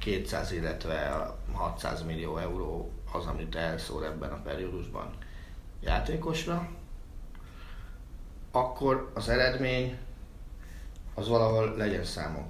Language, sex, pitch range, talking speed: Hungarian, male, 80-115 Hz, 90 wpm